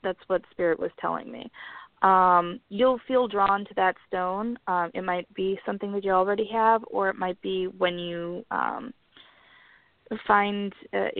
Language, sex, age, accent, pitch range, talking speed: English, female, 20-39, American, 175-220 Hz, 165 wpm